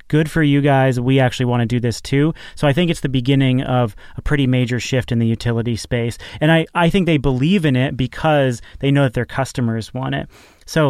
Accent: American